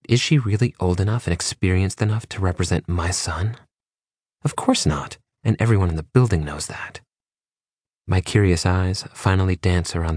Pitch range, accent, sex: 85-100 Hz, American, male